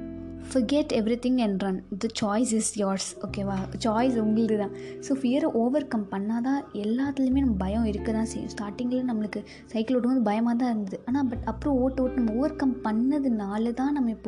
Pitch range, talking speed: 205-255 Hz, 170 wpm